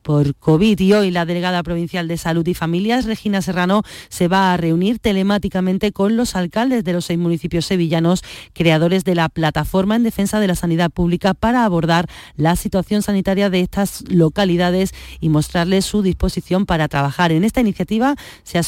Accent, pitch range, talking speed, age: Spanish, 165-200 Hz, 175 wpm, 40-59